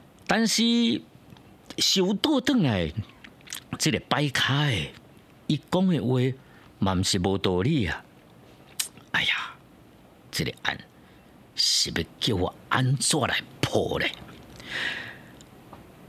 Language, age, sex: Chinese, 50-69, male